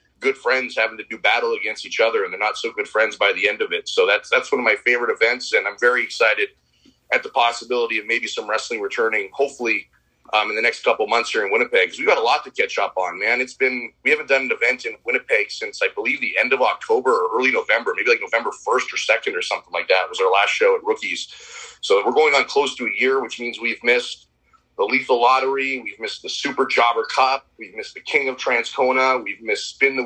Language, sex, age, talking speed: English, male, 30-49, 250 wpm